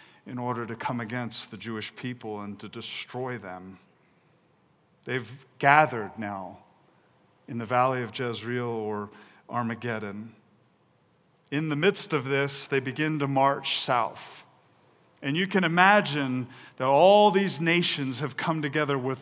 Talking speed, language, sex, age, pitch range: 135 wpm, English, male, 40-59, 115-145 Hz